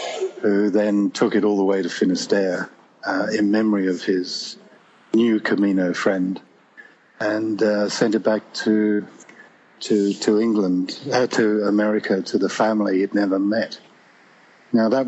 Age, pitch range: 50-69, 100-115 Hz